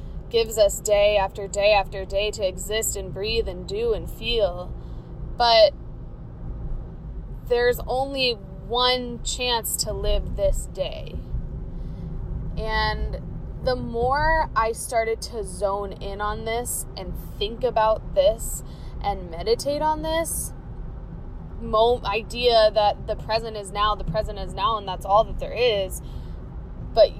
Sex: female